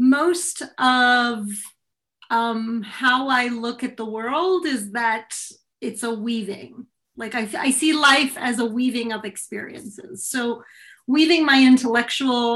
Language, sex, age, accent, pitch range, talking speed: English, female, 30-49, American, 215-260 Hz, 135 wpm